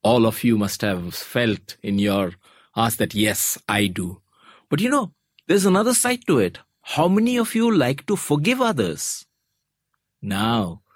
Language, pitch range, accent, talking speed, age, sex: English, 110-160 Hz, Indian, 165 wpm, 50-69, male